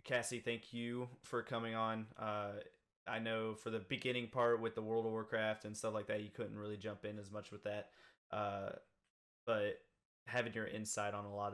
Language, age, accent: English, 20-39, American